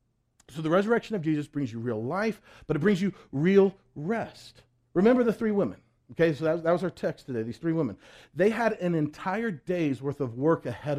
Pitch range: 120-180 Hz